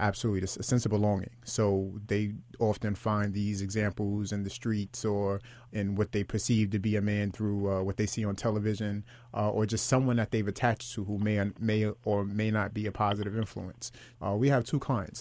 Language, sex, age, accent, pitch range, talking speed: English, male, 30-49, American, 105-120 Hz, 215 wpm